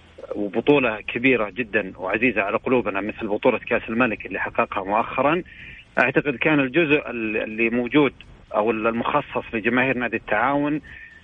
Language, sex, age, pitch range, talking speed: Arabic, male, 40-59, 110-130 Hz, 125 wpm